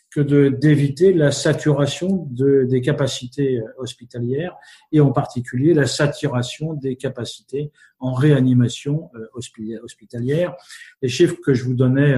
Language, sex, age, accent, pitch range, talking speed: French, male, 50-69, French, 125-150 Hz, 130 wpm